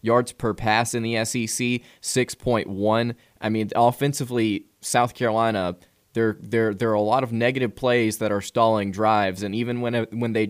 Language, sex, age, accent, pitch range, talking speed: English, male, 20-39, American, 105-120 Hz, 170 wpm